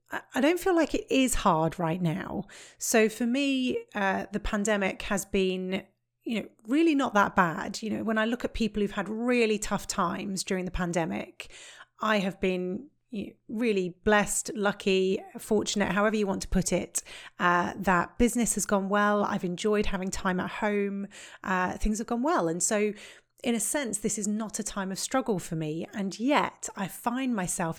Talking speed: 190 wpm